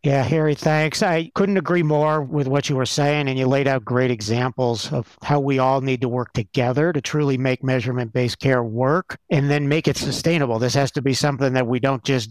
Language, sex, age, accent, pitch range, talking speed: English, male, 50-69, American, 125-150 Hz, 225 wpm